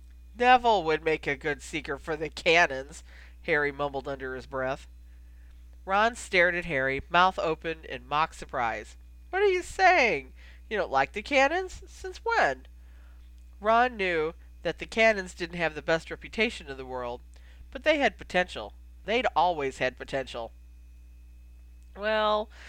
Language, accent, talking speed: English, American, 150 wpm